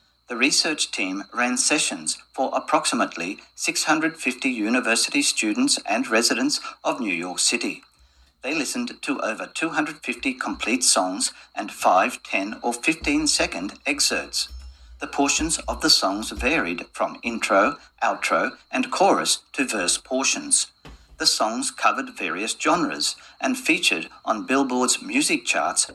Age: 50-69